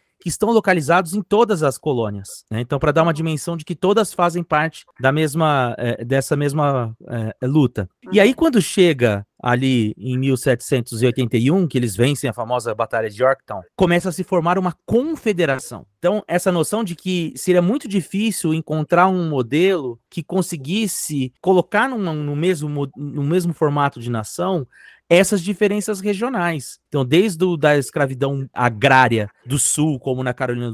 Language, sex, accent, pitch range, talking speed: Portuguese, male, Brazilian, 125-185 Hz, 150 wpm